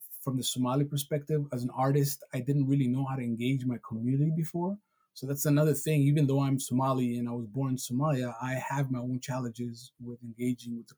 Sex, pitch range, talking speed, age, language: male, 120-140 Hz, 220 wpm, 20-39, English